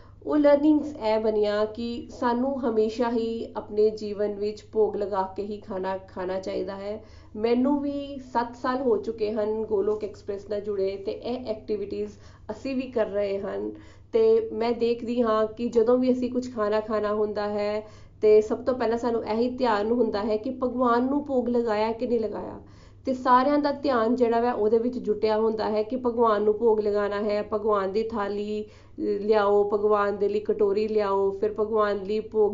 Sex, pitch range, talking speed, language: female, 205-235 Hz, 175 wpm, Punjabi